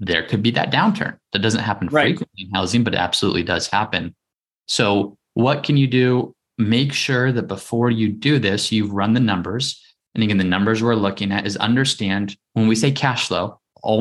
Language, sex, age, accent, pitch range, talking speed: English, male, 20-39, American, 95-120 Hz, 200 wpm